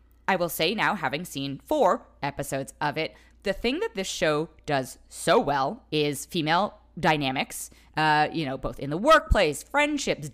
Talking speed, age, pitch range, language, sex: 170 wpm, 20-39, 145-205 Hz, English, female